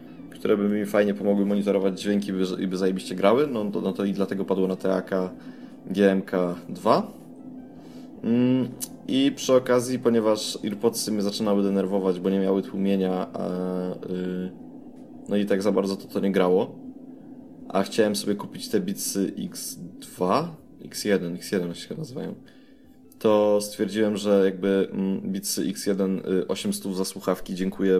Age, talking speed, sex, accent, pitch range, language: 20-39, 145 wpm, male, native, 95-105 Hz, Polish